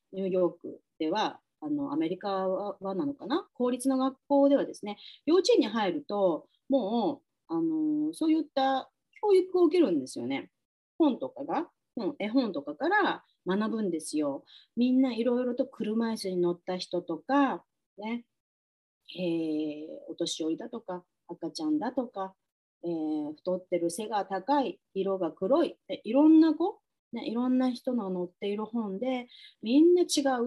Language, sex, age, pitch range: Japanese, female, 30-49, 180-290 Hz